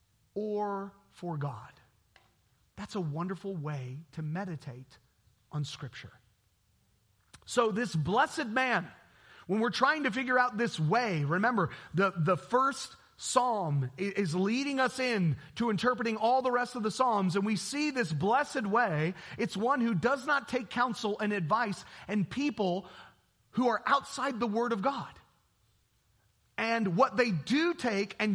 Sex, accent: male, American